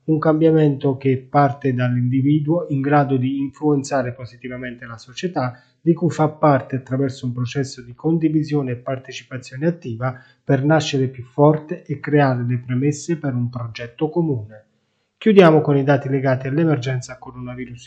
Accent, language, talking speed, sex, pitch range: native, Italian, 145 wpm, male, 125-150 Hz